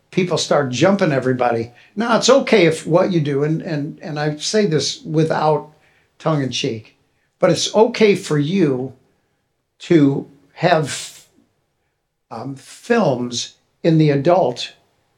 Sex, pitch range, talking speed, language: male, 135-175 Hz, 130 wpm, English